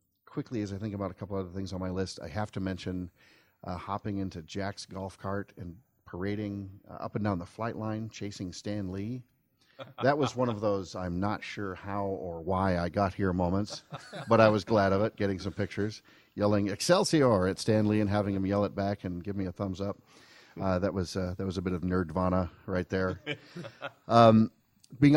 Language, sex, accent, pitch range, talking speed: English, male, American, 90-110 Hz, 215 wpm